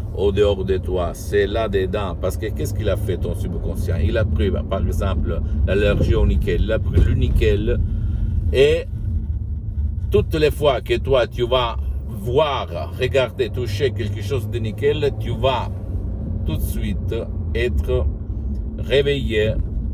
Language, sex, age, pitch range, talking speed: Italian, male, 60-79, 85-105 Hz, 150 wpm